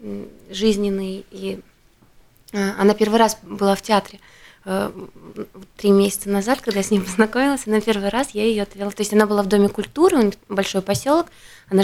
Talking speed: 160 wpm